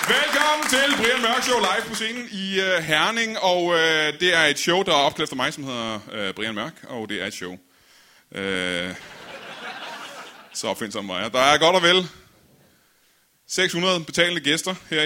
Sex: male